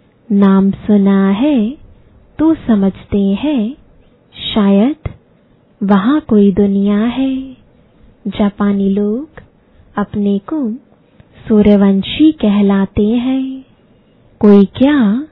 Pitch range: 200-250 Hz